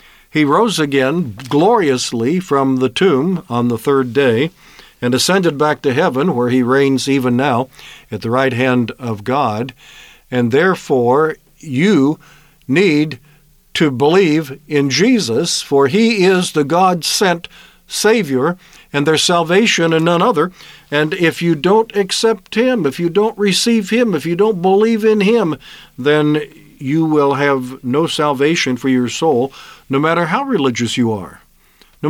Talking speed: 150 wpm